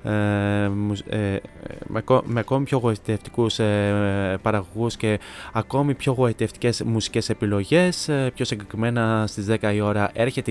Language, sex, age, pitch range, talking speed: Greek, male, 20-39, 110-130 Hz, 135 wpm